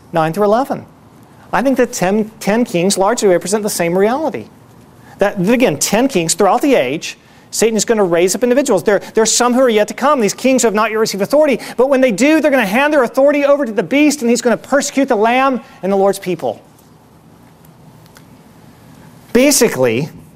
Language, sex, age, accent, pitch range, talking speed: English, male, 40-59, American, 185-250 Hz, 210 wpm